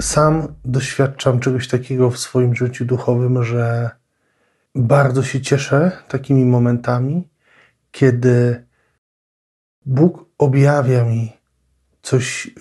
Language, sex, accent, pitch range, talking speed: Polish, male, native, 125-140 Hz, 90 wpm